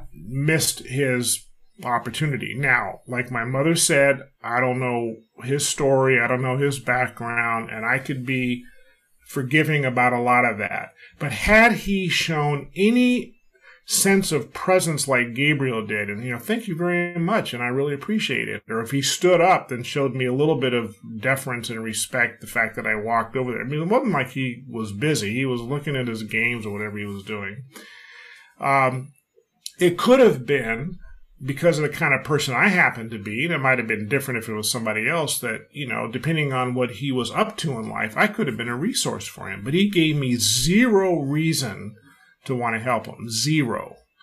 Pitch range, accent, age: 125-165 Hz, American, 30-49